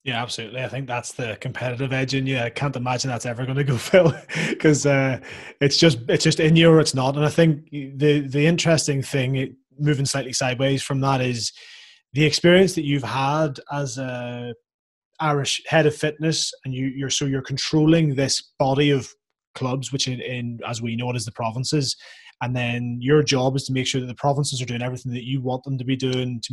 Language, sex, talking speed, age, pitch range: English, male, 215 wpm, 20-39, 125-145 Hz